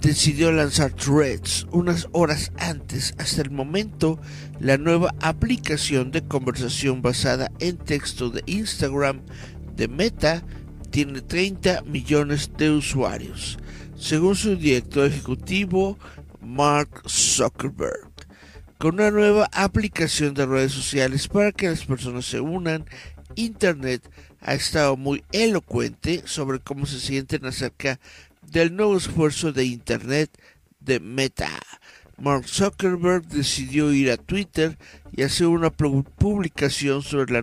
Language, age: Spanish, 60-79